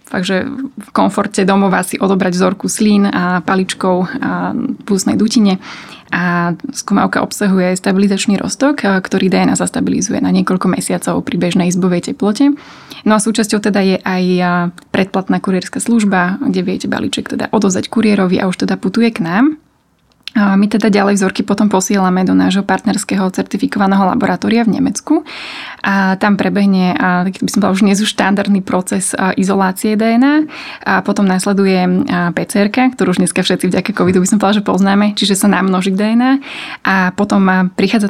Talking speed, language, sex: 155 wpm, Slovak, female